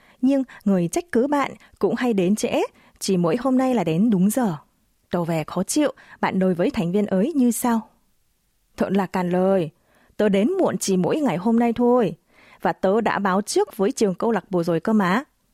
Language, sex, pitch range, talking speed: Vietnamese, female, 180-235 Hz, 210 wpm